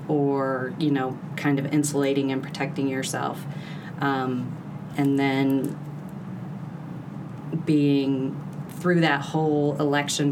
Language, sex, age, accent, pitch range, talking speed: English, female, 30-49, American, 140-160 Hz, 100 wpm